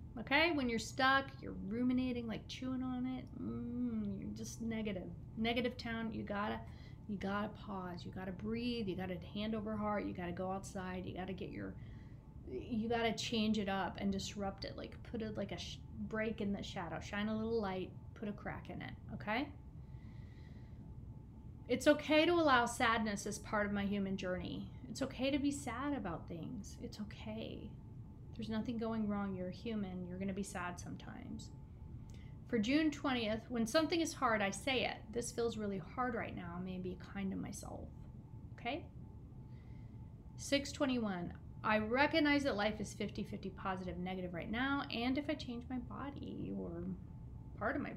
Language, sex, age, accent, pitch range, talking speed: English, female, 30-49, American, 185-250 Hz, 180 wpm